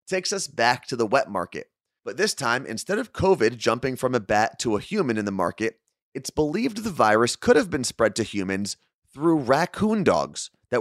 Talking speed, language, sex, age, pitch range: 205 wpm, English, male, 30-49, 105-150 Hz